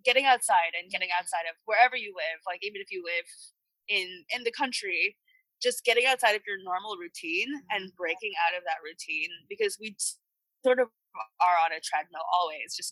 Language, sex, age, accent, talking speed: English, female, 20-39, American, 190 wpm